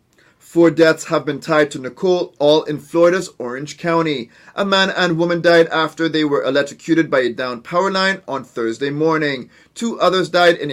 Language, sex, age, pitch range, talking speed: English, male, 30-49, 140-175 Hz, 185 wpm